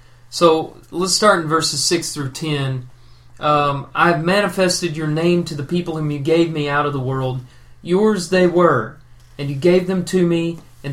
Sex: male